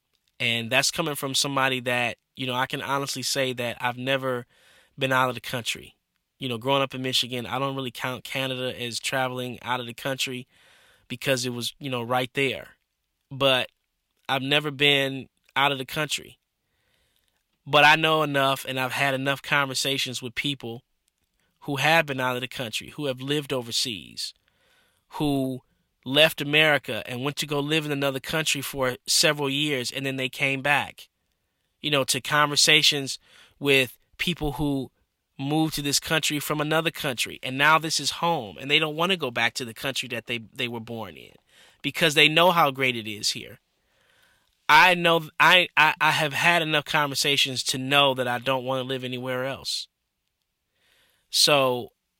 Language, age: English, 20-39